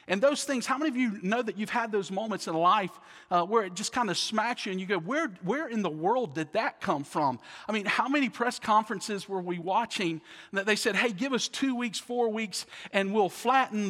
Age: 40-59